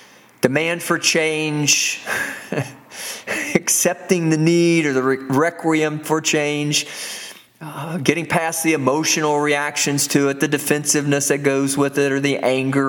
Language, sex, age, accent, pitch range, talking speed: English, male, 40-59, American, 135-170 Hz, 130 wpm